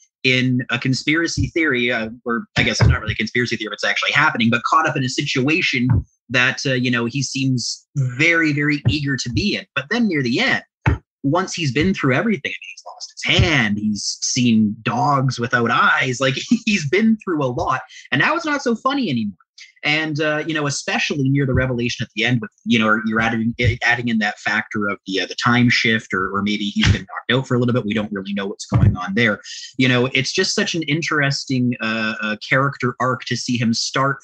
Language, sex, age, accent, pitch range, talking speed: English, male, 30-49, American, 115-140 Hz, 225 wpm